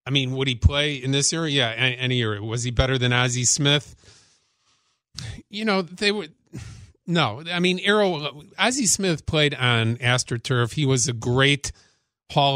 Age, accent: 40-59, American